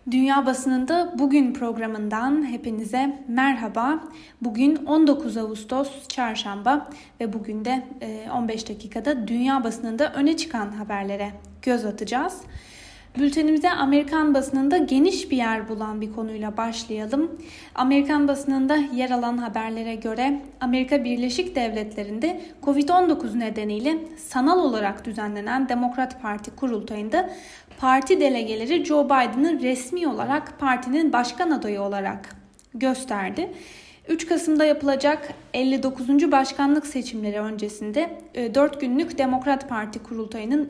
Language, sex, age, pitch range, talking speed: Turkish, female, 10-29, 230-290 Hz, 105 wpm